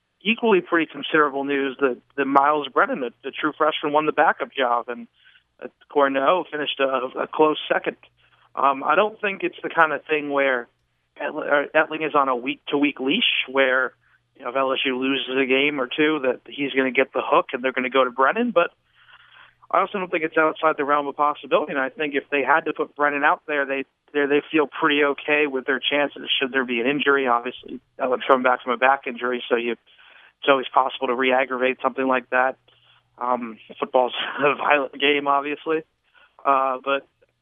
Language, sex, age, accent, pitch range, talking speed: English, male, 40-59, American, 130-150 Hz, 200 wpm